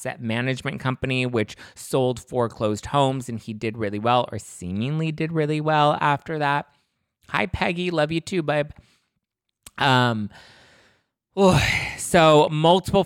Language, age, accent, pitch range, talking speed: English, 30-49, American, 115-150 Hz, 130 wpm